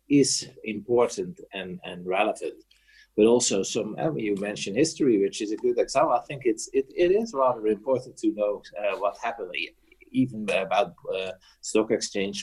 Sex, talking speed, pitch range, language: male, 170 wpm, 110-175 Hz, English